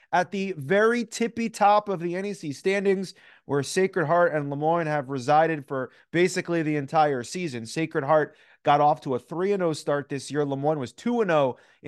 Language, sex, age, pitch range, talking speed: English, male, 30-49, 145-180 Hz, 170 wpm